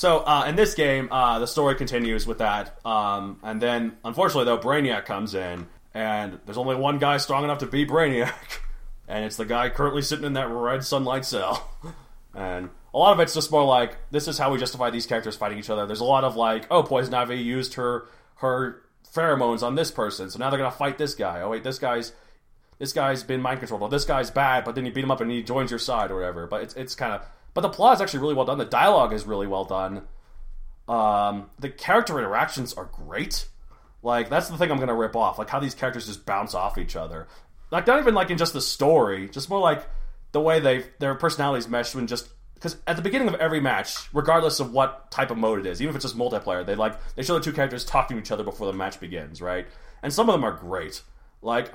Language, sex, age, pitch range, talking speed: English, male, 30-49, 110-140 Hz, 245 wpm